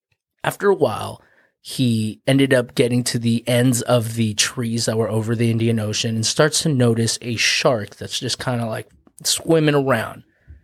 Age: 20-39